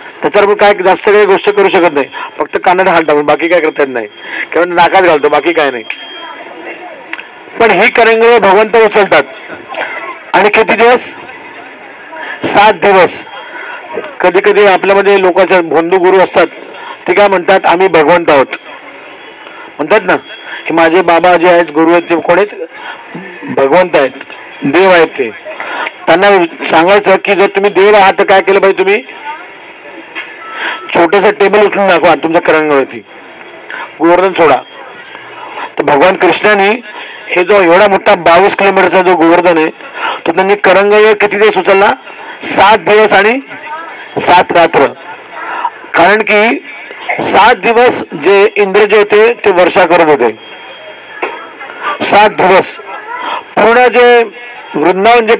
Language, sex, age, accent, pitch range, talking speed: Marathi, male, 40-59, native, 180-225 Hz, 125 wpm